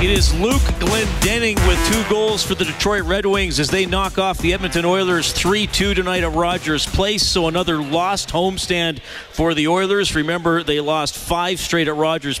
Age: 40-59